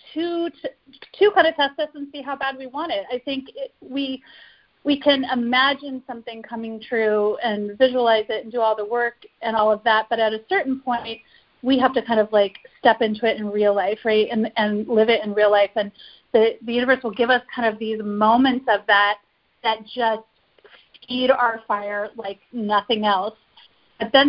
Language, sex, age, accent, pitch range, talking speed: English, female, 40-59, American, 220-275 Hz, 210 wpm